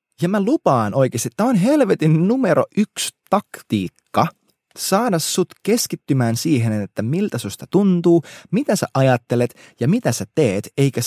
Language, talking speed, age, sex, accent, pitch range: Finnish, 145 wpm, 20-39, male, native, 115-175 Hz